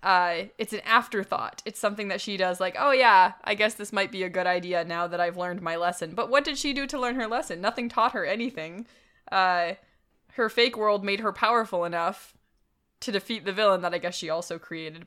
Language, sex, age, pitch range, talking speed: English, female, 20-39, 175-215 Hz, 225 wpm